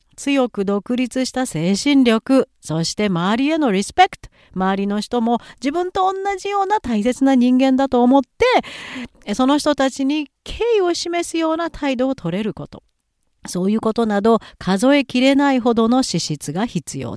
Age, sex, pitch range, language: 40-59, female, 175-270 Hz, Japanese